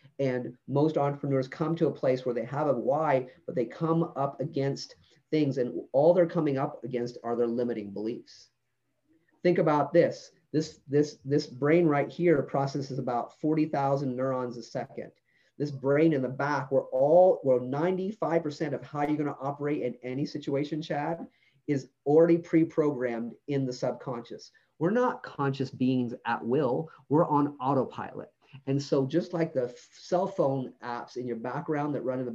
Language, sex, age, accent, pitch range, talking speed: English, male, 30-49, American, 125-150 Hz, 170 wpm